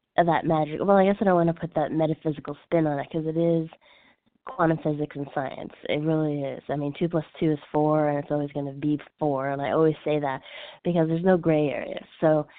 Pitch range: 150-170 Hz